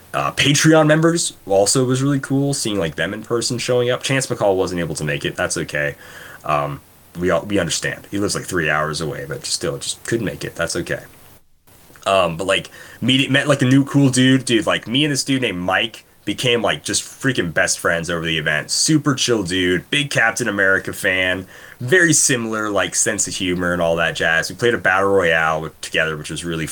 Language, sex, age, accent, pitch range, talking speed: English, male, 20-39, American, 85-125 Hz, 220 wpm